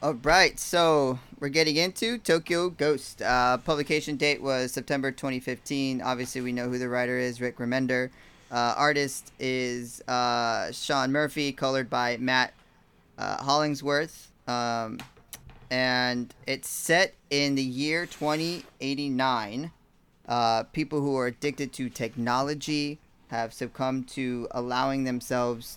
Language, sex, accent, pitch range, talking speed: English, male, American, 120-145 Hz, 125 wpm